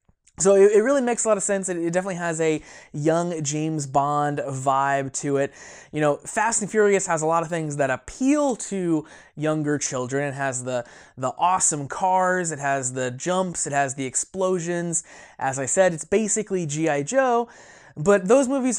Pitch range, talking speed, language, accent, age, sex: 145-200 Hz, 180 wpm, English, American, 20-39, male